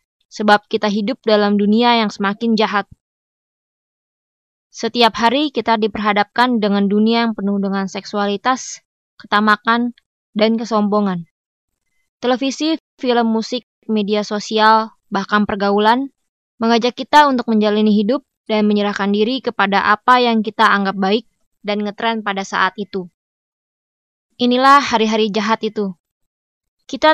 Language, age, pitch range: Indonesian, 20-39, 210-240 Hz